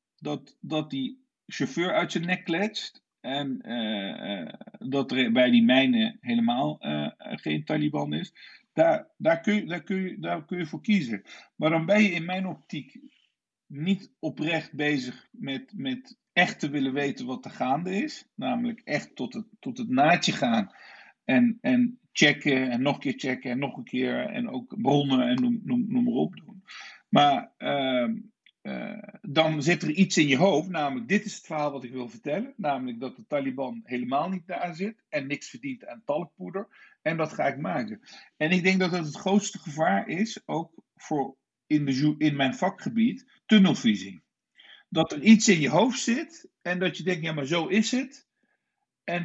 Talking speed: 185 wpm